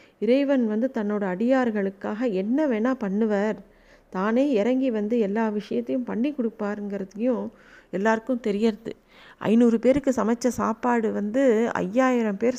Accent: native